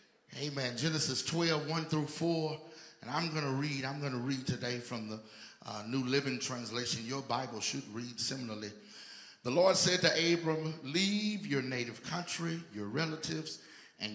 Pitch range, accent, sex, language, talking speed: 110-160 Hz, American, male, English, 165 wpm